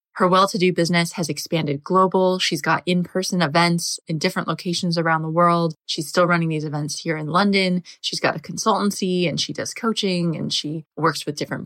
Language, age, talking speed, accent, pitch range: English, 20-39, 190 wpm, American, 160-200 Hz